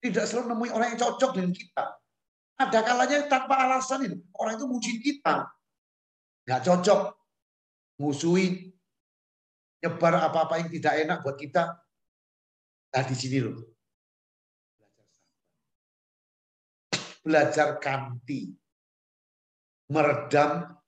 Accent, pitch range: native, 120-195 Hz